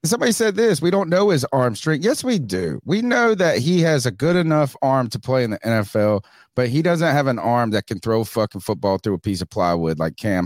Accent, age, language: American, 30-49, English